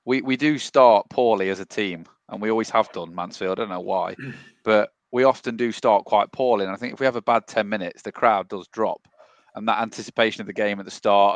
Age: 30-49